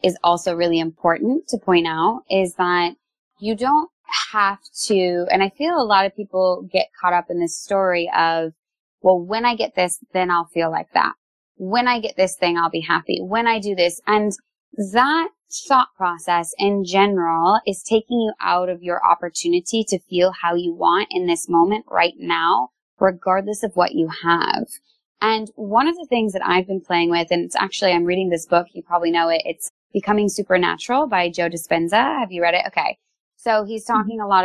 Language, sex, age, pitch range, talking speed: English, female, 20-39, 175-230 Hz, 200 wpm